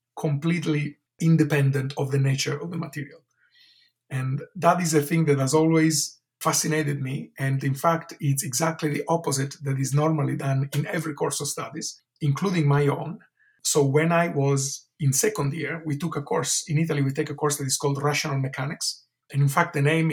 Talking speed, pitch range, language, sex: 190 wpm, 140-160 Hz, English, male